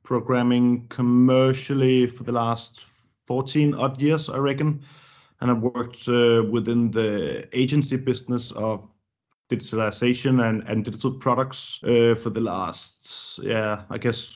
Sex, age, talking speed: male, 30-49, 130 wpm